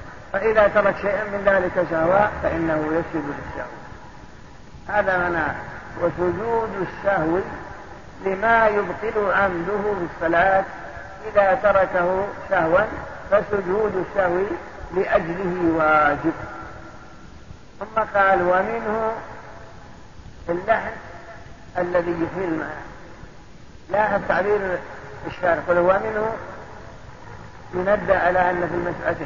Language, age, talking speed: Arabic, 50-69, 85 wpm